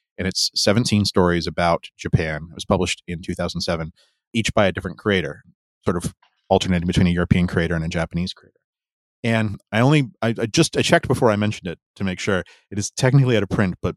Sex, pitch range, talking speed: male, 90-115 Hz, 210 wpm